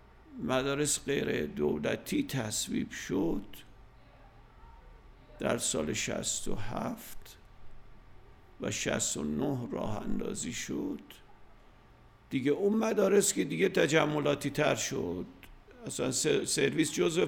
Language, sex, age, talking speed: Persian, male, 50-69, 85 wpm